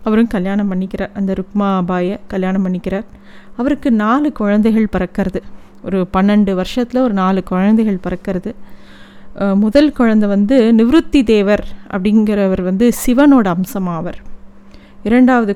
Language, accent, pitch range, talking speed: Tamil, native, 195-240 Hz, 110 wpm